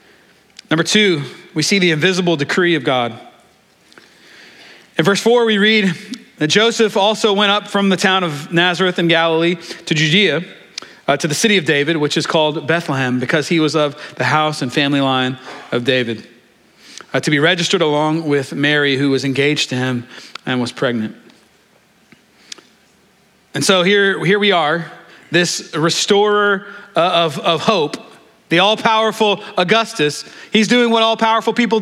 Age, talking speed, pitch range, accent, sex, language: 40-59, 155 wpm, 155-205 Hz, American, male, English